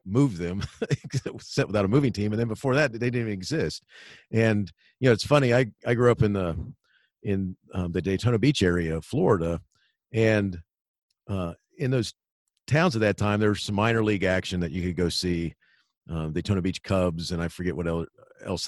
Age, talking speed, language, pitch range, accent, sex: 40-59, 200 wpm, English, 90-115 Hz, American, male